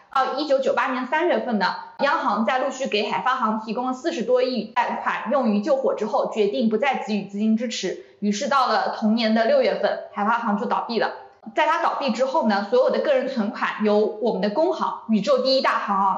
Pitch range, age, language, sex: 215-280 Hz, 20-39, Chinese, female